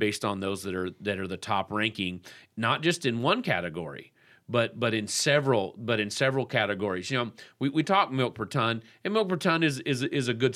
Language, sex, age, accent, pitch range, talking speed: English, male, 40-59, American, 110-135 Hz, 225 wpm